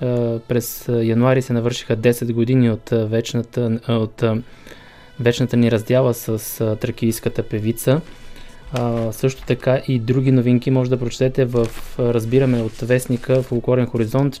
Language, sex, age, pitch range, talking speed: Bulgarian, male, 20-39, 115-130 Hz, 120 wpm